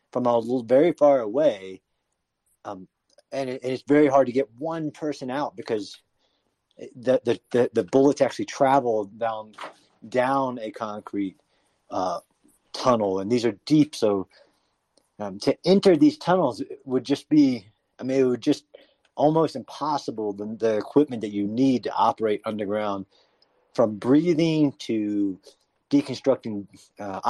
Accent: American